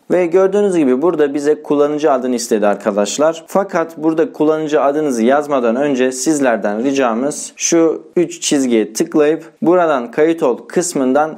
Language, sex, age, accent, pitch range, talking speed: English, male, 40-59, Turkish, 125-160 Hz, 130 wpm